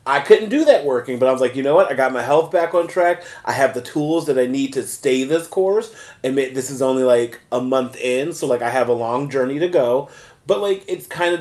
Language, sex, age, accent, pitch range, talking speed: English, male, 30-49, American, 120-150 Hz, 275 wpm